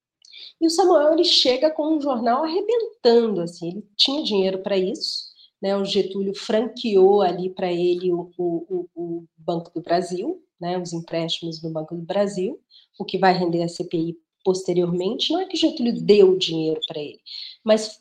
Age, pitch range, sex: 40-59, 180-230 Hz, female